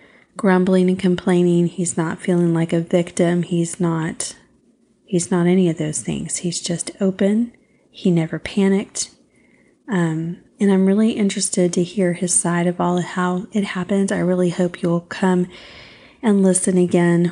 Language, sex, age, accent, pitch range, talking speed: English, female, 30-49, American, 180-200 Hz, 160 wpm